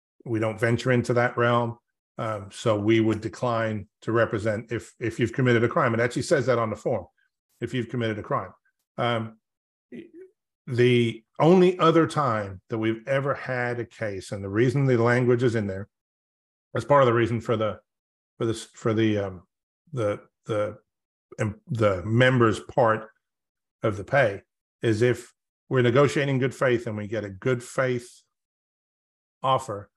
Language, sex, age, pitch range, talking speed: English, male, 50-69, 110-125 Hz, 170 wpm